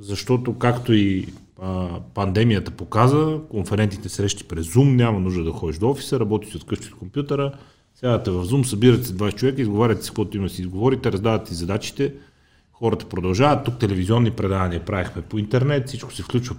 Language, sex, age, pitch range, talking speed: Bulgarian, male, 30-49, 100-125 Hz, 170 wpm